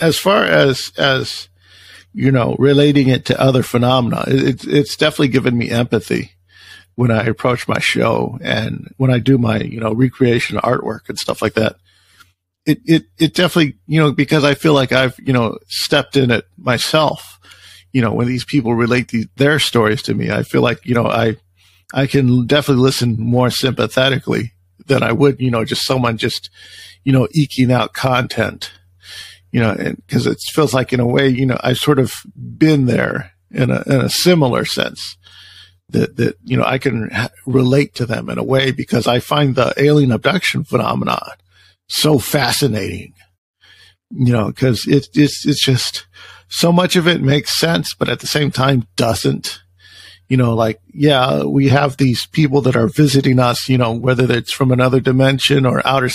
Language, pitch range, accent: English, 110-135 Hz, American